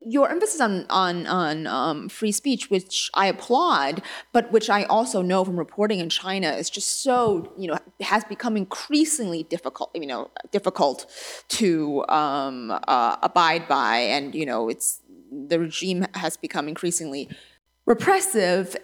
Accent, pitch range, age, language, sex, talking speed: American, 175-245 Hz, 20-39, English, female, 150 wpm